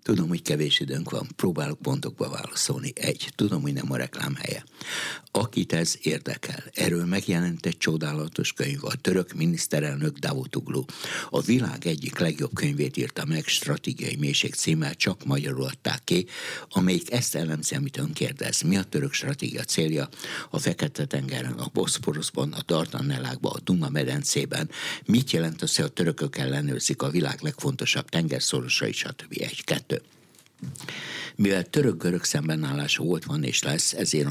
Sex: male